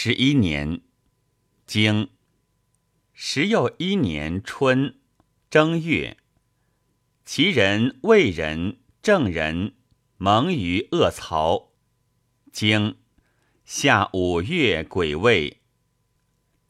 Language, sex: Chinese, male